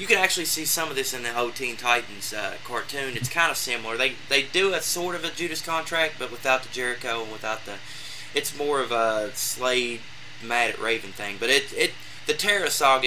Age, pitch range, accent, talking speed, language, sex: 20-39, 115-145 Hz, American, 225 wpm, English, male